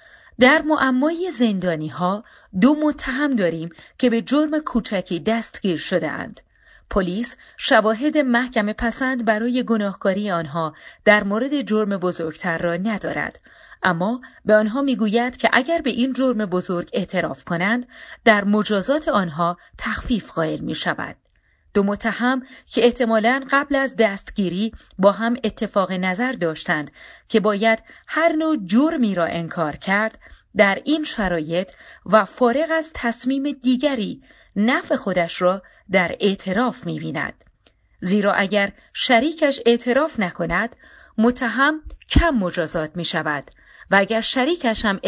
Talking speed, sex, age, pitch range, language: 125 wpm, female, 30-49, 185-255 Hz, Persian